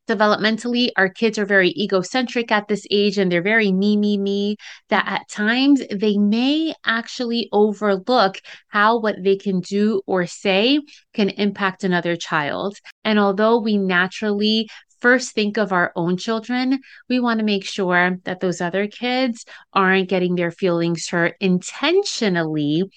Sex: female